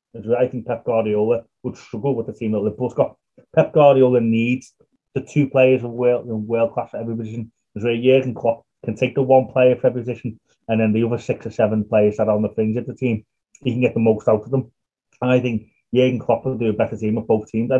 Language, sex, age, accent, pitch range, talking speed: English, male, 30-49, British, 115-140 Hz, 255 wpm